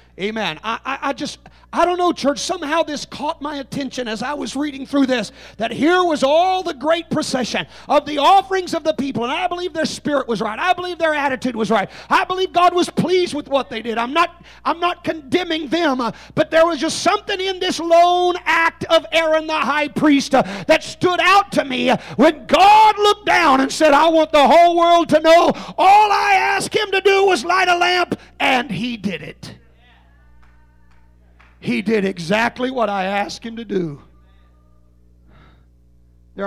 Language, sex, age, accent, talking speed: English, male, 40-59, American, 195 wpm